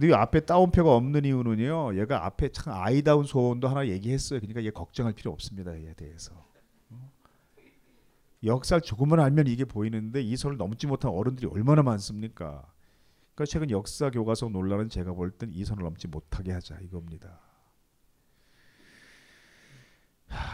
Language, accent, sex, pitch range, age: Korean, native, male, 85-125 Hz, 40-59